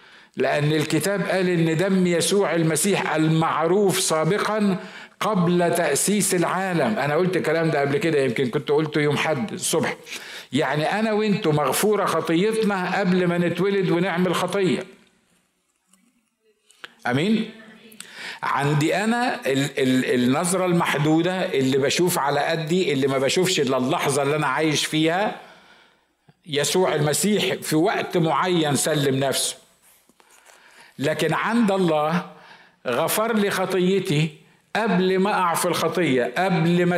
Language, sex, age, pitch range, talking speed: Arabic, male, 50-69, 155-190 Hz, 120 wpm